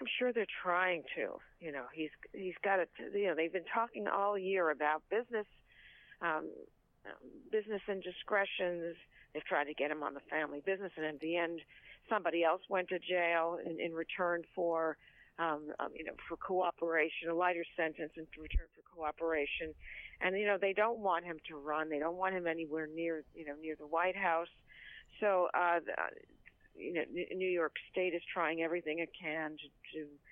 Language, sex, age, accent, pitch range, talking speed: English, female, 50-69, American, 155-195 Hz, 185 wpm